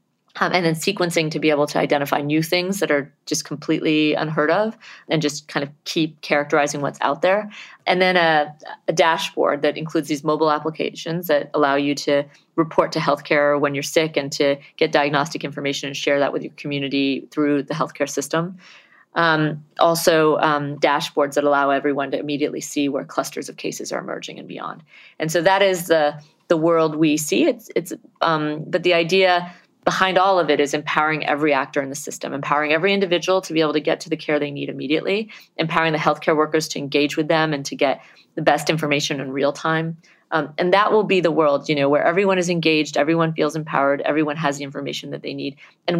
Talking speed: 210 wpm